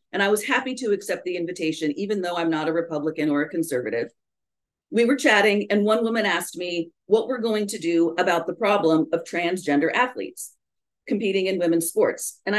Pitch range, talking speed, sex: 180-265 Hz, 195 wpm, female